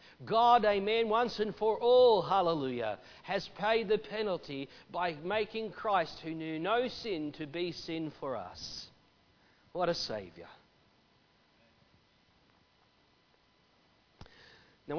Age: 40-59